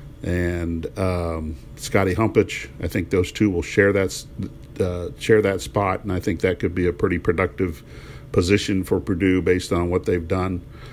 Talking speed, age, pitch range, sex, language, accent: 175 wpm, 50-69, 90-100 Hz, male, English, American